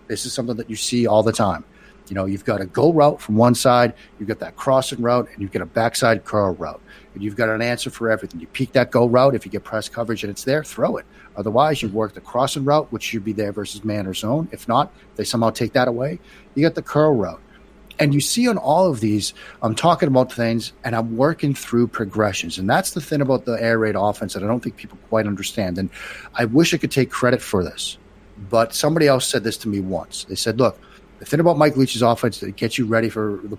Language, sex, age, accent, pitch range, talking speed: English, male, 40-59, American, 110-135 Hz, 255 wpm